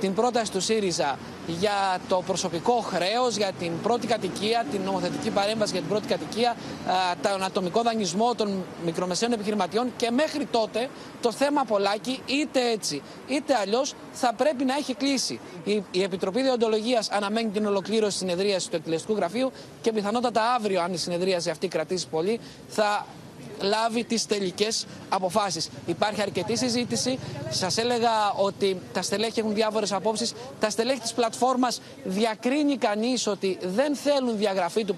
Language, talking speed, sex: Greek, 150 wpm, male